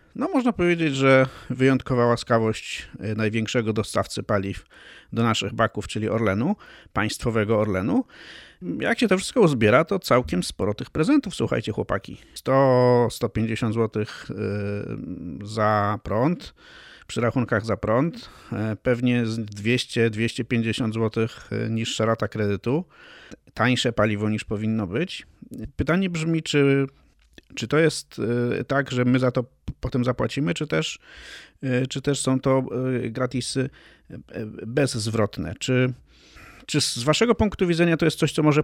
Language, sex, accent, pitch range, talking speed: Polish, male, native, 110-135 Hz, 125 wpm